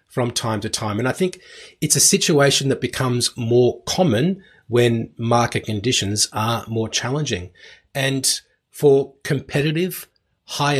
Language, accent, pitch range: English, Australian, 120-150 Hz